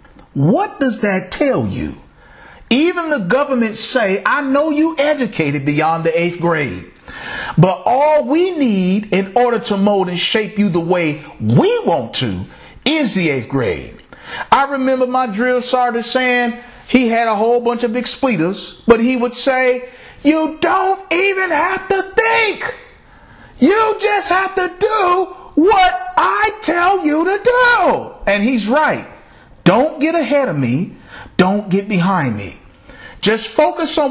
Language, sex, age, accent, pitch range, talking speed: English, male, 40-59, American, 190-300 Hz, 150 wpm